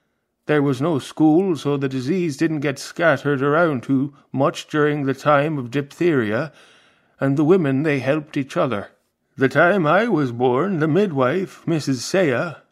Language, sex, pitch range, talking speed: English, male, 135-170 Hz, 160 wpm